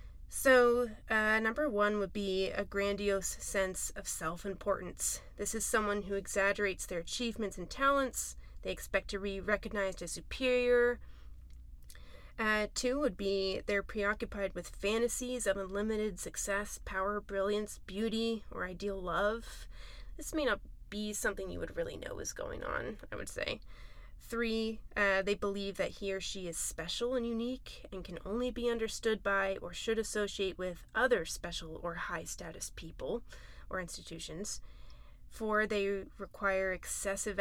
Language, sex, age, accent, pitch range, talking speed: English, female, 20-39, American, 195-225 Hz, 150 wpm